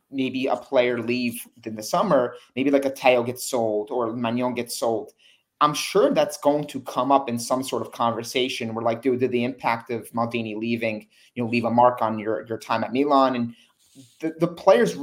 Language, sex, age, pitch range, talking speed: English, male, 30-49, 120-150 Hz, 210 wpm